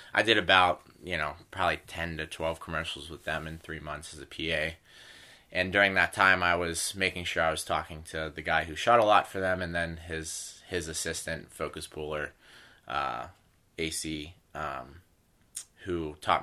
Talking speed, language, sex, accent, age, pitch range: 185 wpm, English, male, American, 20-39, 80-90 Hz